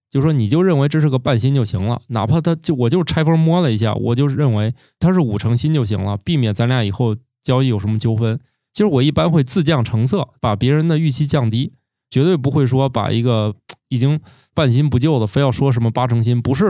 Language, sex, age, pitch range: Chinese, male, 20-39, 115-155 Hz